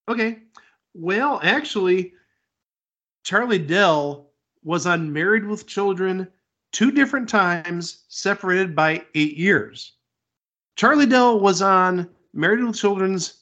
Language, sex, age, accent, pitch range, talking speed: English, male, 40-59, American, 150-210 Hz, 105 wpm